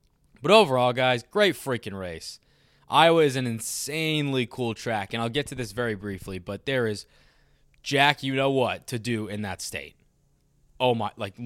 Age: 20-39